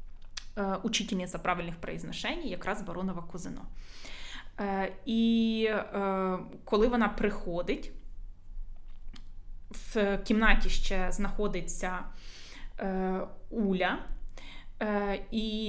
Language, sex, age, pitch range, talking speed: Ukrainian, female, 20-39, 180-215 Hz, 65 wpm